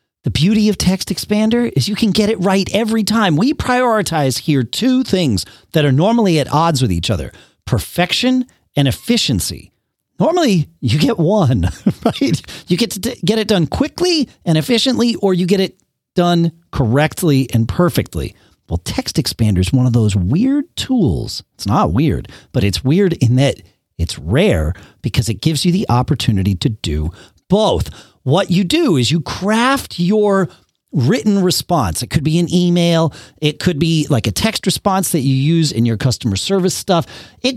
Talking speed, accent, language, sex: 175 wpm, American, English, male